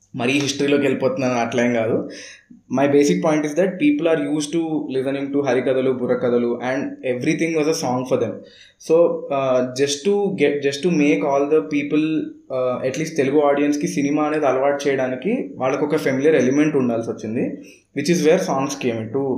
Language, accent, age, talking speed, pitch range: Telugu, native, 20-39, 175 wpm, 135-170 Hz